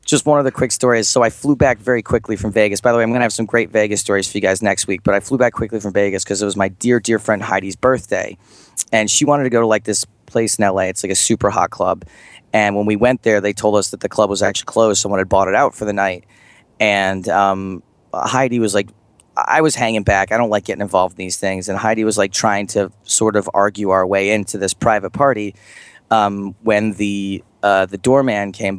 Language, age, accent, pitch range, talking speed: English, 30-49, American, 100-120 Hz, 260 wpm